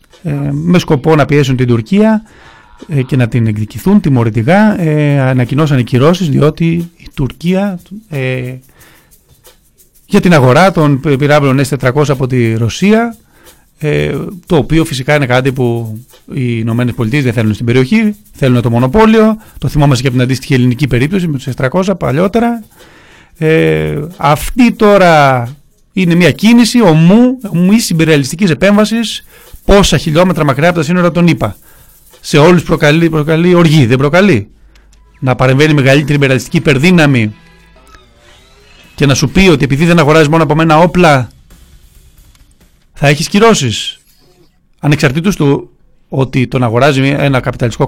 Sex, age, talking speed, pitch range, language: male, 30-49, 135 wpm, 125-170 Hz, Greek